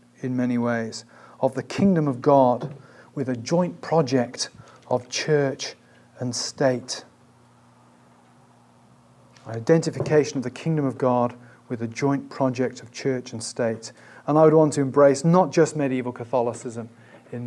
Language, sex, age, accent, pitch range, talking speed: English, male, 40-59, British, 125-165 Hz, 140 wpm